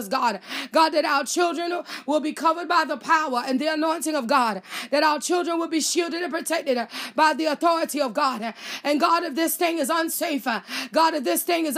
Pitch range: 240-330 Hz